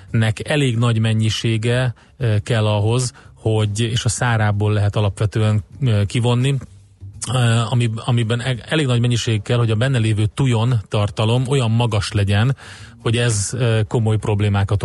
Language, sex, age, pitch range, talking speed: Hungarian, male, 30-49, 105-120 Hz, 125 wpm